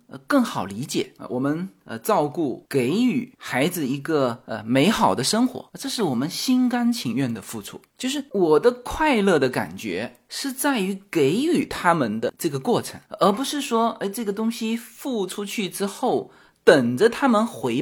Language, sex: Chinese, male